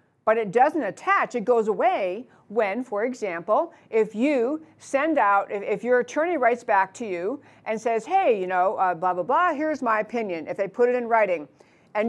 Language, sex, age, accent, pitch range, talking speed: English, female, 50-69, American, 205-270 Hz, 205 wpm